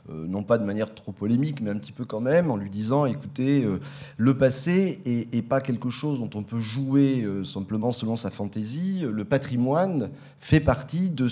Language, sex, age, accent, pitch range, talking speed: French, male, 30-49, French, 110-150 Hz, 185 wpm